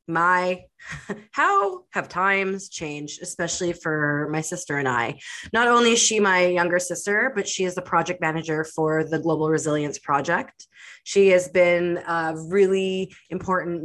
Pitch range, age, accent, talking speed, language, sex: 160-200 Hz, 20-39, American, 150 wpm, English, female